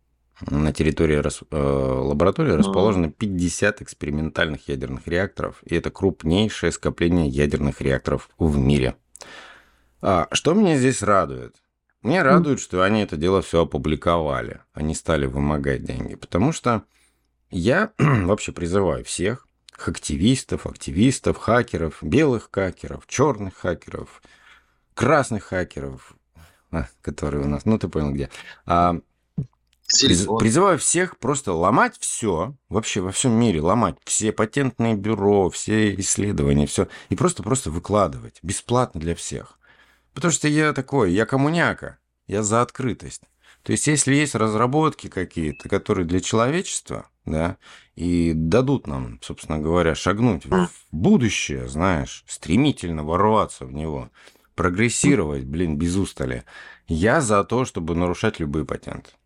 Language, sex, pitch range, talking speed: Russian, male, 75-110 Hz, 125 wpm